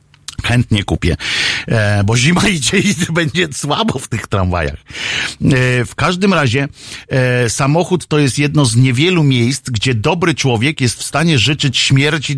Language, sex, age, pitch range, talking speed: Polish, male, 50-69, 105-140 Hz, 140 wpm